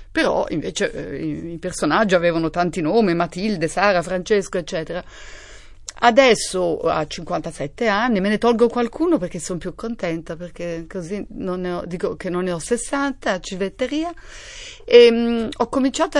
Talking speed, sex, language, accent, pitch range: 150 wpm, female, Italian, native, 185-245 Hz